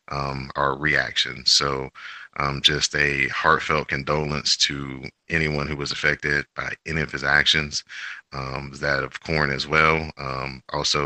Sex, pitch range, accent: male, 70-75 Hz, American